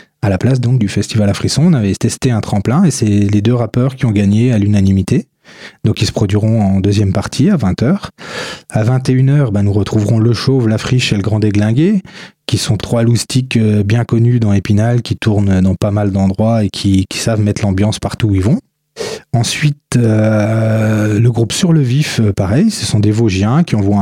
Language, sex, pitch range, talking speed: French, male, 105-130 Hz, 205 wpm